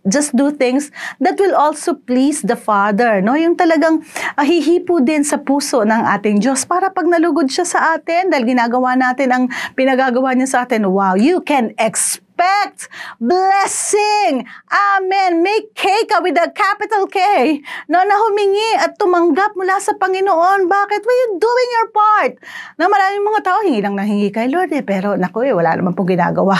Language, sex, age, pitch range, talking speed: Filipino, female, 40-59, 235-360 Hz, 175 wpm